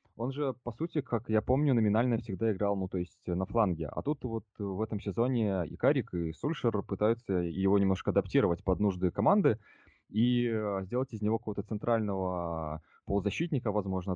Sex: male